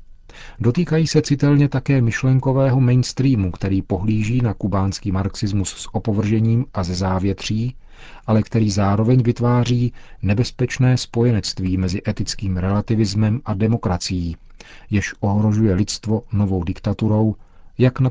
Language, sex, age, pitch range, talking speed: Czech, male, 40-59, 95-115 Hz, 115 wpm